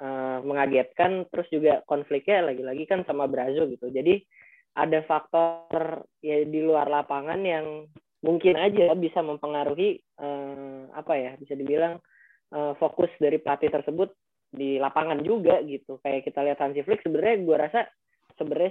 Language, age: Indonesian, 20-39